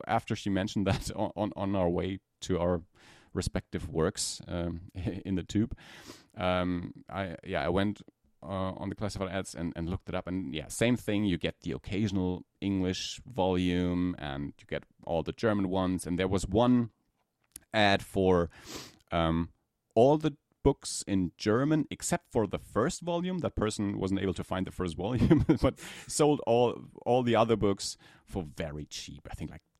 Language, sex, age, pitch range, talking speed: English, male, 30-49, 90-115 Hz, 175 wpm